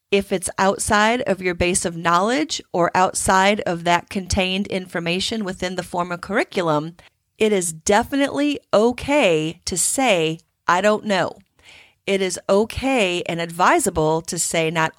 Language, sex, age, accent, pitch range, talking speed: English, female, 40-59, American, 165-200 Hz, 145 wpm